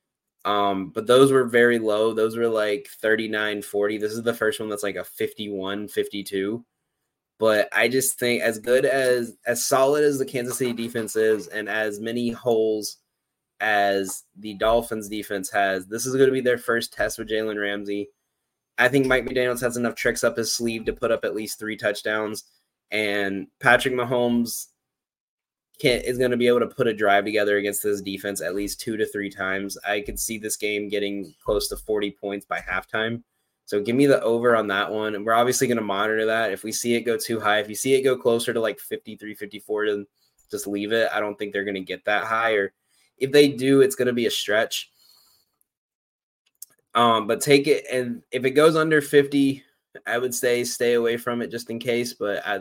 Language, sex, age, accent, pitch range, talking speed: English, male, 20-39, American, 105-120 Hz, 210 wpm